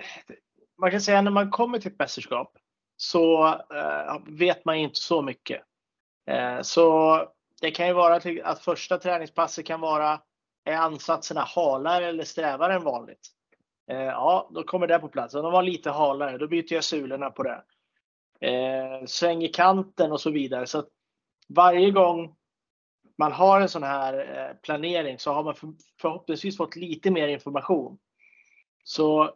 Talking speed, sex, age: 160 wpm, male, 30-49